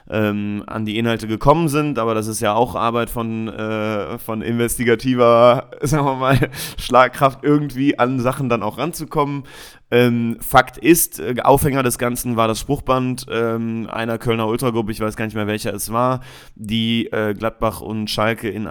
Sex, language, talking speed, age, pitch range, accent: male, German, 165 wpm, 30-49, 110-130 Hz, German